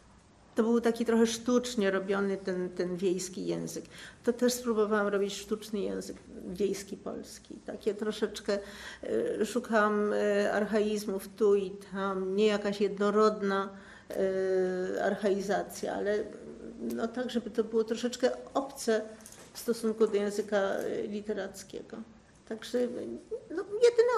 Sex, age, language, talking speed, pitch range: female, 50-69, Polish, 105 wpm, 205-245 Hz